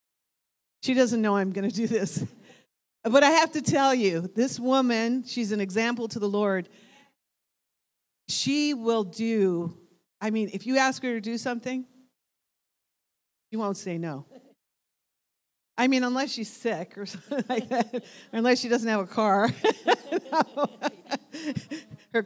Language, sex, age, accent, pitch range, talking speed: English, female, 40-59, American, 200-255 Hz, 145 wpm